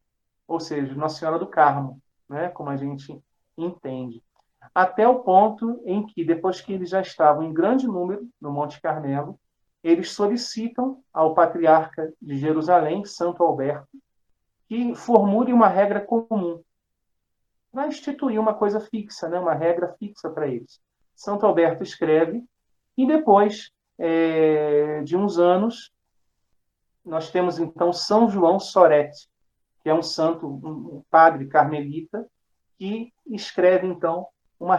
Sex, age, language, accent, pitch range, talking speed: male, 40-59, Portuguese, Brazilian, 155-200 Hz, 130 wpm